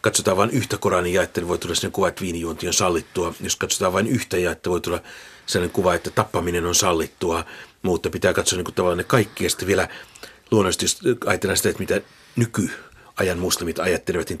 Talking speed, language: 195 wpm, Finnish